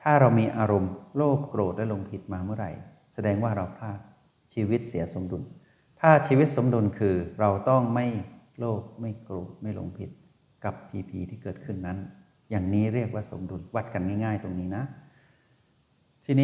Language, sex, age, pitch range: Thai, male, 60-79, 95-125 Hz